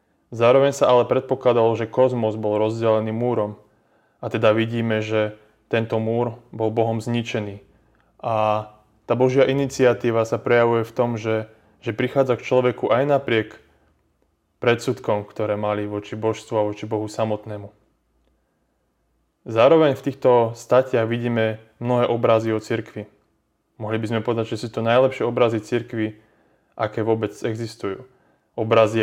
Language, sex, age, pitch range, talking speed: Slovak, male, 20-39, 105-120 Hz, 135 wpm